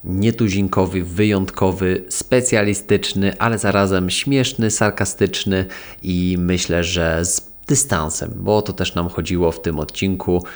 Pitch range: 85-100 Hz